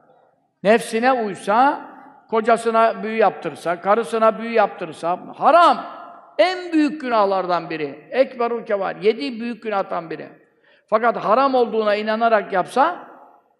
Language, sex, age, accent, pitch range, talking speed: Turkish, male, 50-69, native, 210-275 Hz, 105 wpm